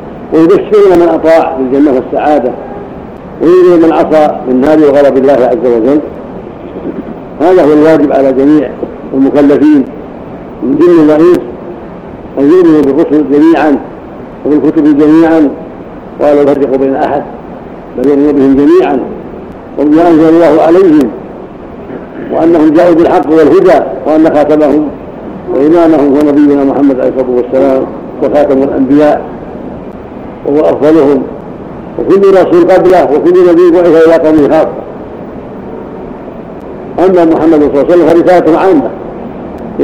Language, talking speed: Arabic, 110 wpm